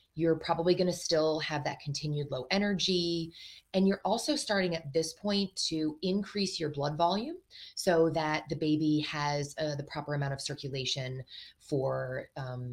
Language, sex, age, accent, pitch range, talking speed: English, female, 20-39, American, 145-180 Hz, 160 wpm